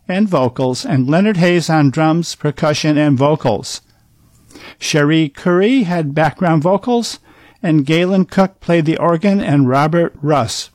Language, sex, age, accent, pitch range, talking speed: English, male, 50-69, American, 145-195 Hz, 135 wpm